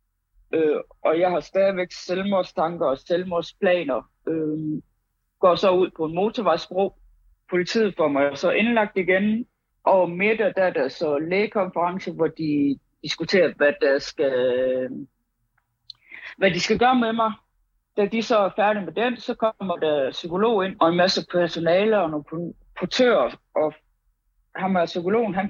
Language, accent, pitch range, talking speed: Danish, native, 160-205 Hz, 150 wpm